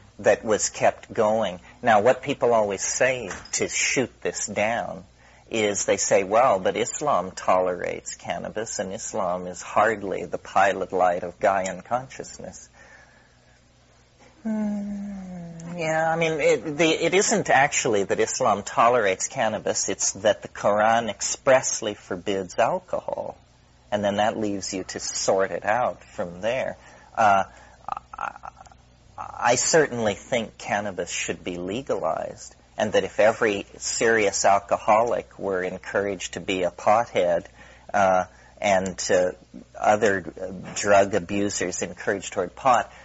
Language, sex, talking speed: English, male, 130 wpm